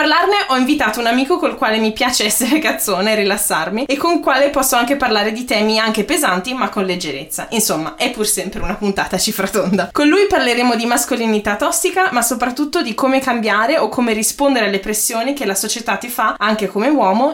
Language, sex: Italian, female